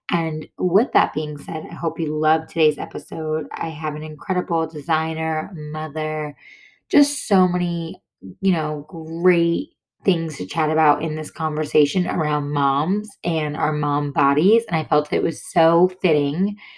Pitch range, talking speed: 155-200 Hz, 155 wpm